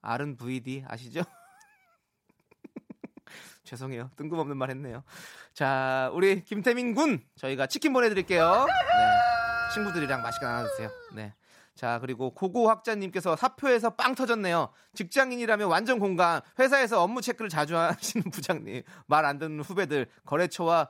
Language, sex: Korean, male